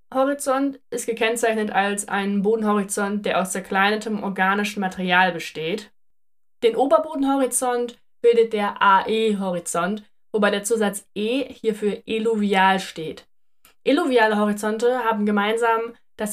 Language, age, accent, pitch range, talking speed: German, 20-39, German, 205-255 Hz, 105 wpm